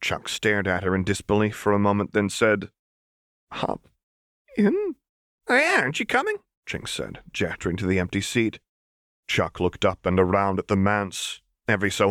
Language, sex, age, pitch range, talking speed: English, male, 30-49, 95-115 Hz, 175 wpm